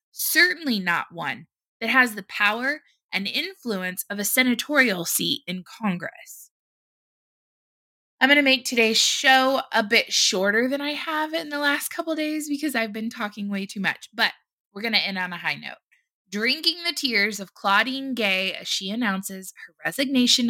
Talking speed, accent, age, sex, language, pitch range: 175 wpm, American, 20-39, female, English, 190-265 Hz